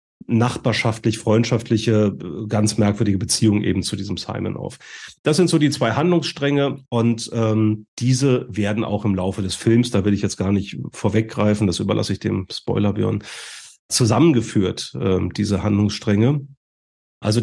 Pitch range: 105-120 Hz